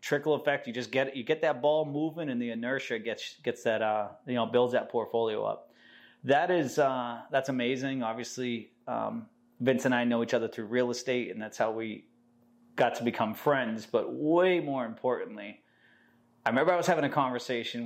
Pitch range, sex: 115-155 Hz, male